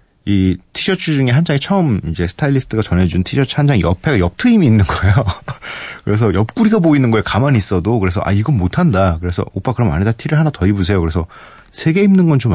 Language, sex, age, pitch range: Korean, male, 30-49, 95-135 Hz